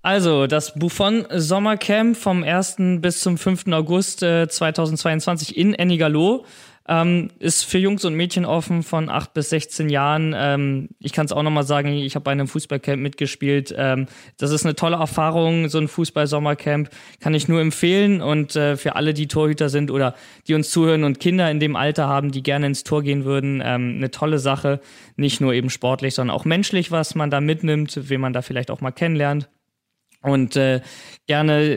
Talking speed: 185 wpm